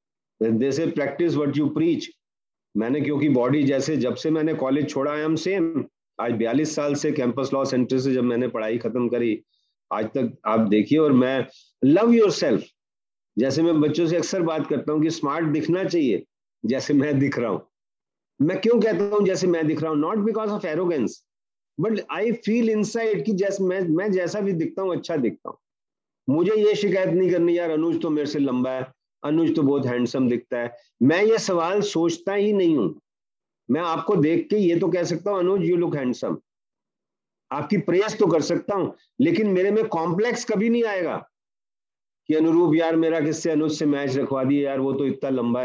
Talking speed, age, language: 195 wpm, 40-59, Hindi